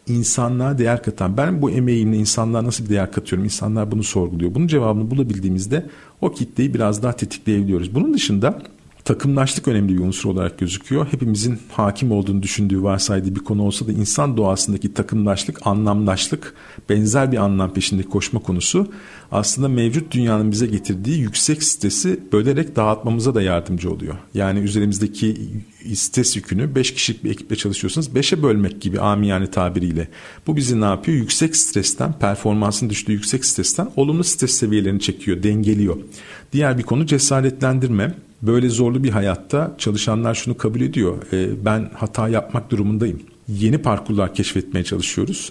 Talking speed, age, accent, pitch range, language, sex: 145 wpm, 50-69, native, 100-130 Hz, Turkish, male